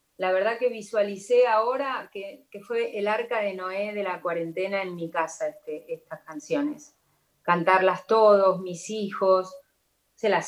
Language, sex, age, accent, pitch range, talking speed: Spanish, female, 30-49, Argentinian, 175-215 Hz, 155 wpm